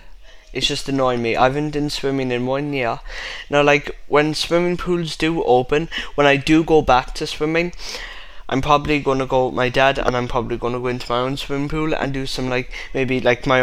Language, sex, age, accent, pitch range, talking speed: English, male, 20-39, British, 125-150 Hz, 215 wpm